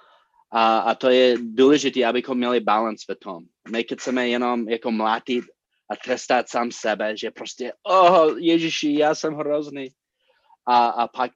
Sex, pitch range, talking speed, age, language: male, 115-135 Hz, 155 wpm, 30-49, Czech